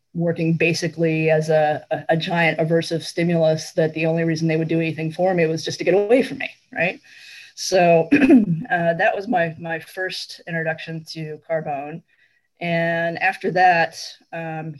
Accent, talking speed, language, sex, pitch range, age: American, 165 wpm, English, female, 155-170 Hz, 20-39